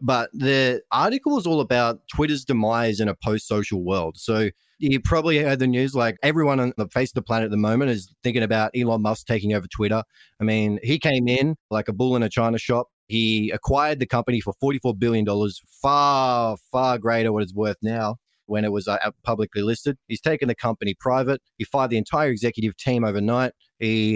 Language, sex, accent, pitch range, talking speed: English, male, Australian, 110-135 Hz, 200 wpm